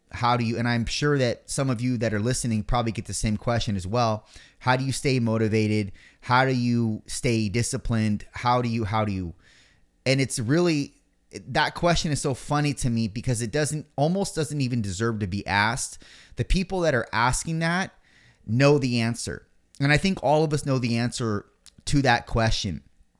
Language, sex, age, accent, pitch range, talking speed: English, male, 30-49, American, 110-145 Hz, 200 wpm